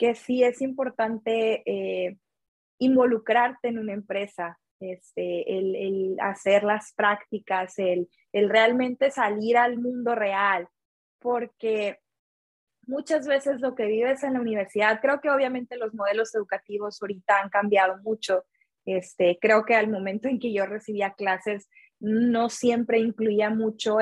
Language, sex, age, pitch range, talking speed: Spanish, female, 20-39, 200-245 Hz, 135 wpm